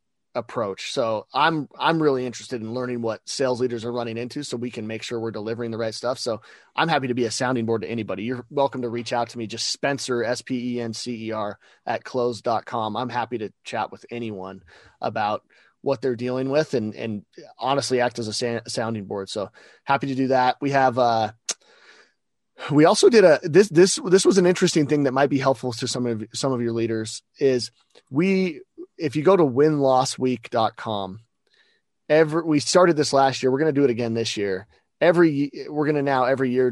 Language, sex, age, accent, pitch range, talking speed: English, male, 30-49, American, 115-145 Hz, 215 wpm